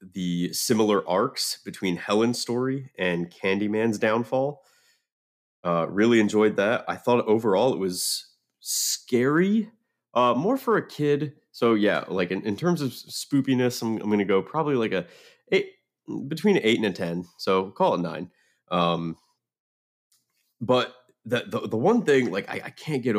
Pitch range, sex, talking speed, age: 90-125 Hz, male, 165 wpm, 30-49